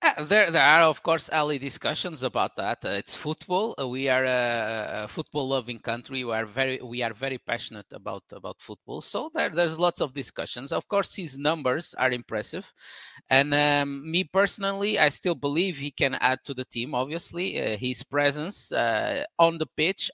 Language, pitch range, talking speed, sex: English, 125-160 Hz, 185 wpm, male